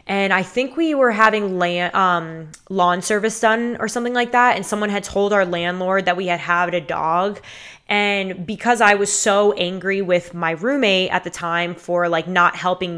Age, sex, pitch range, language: 10-29, female, 180-210 Hz, English